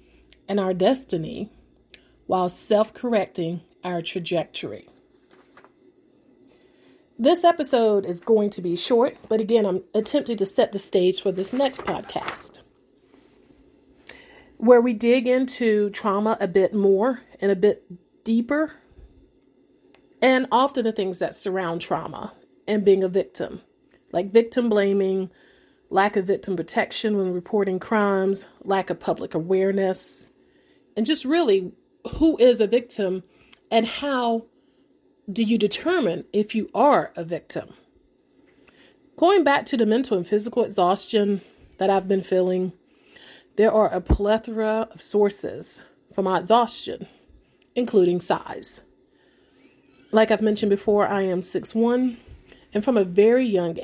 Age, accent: 40-59, American